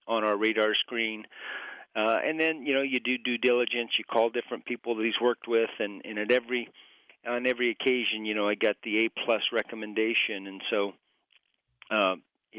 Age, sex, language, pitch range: 40-59, male, English, 105-115 Hz